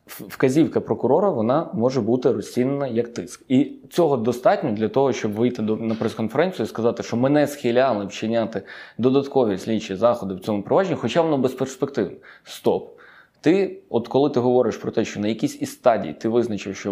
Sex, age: male, 20-39